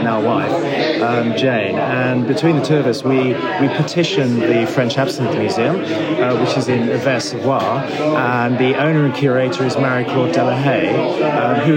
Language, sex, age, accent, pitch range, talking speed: English, male, 30-49, British, 130-155 Hz, 170 wpm